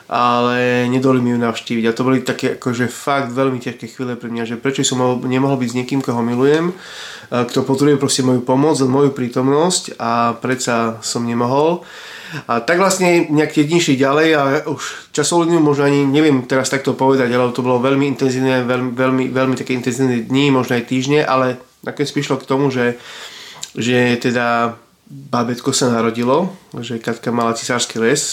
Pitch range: 120-140 Hz